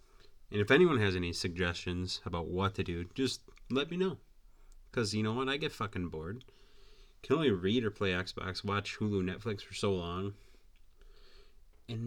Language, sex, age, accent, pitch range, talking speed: English, male, 30-49, American, 90-110 Hz, 175 wpm